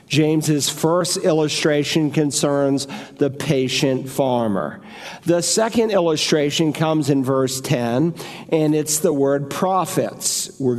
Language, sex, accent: English, male, American